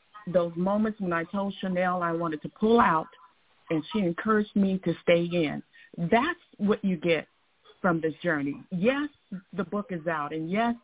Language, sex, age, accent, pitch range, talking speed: English, female, 50-69, American, 175-225 Hz, 175 wpm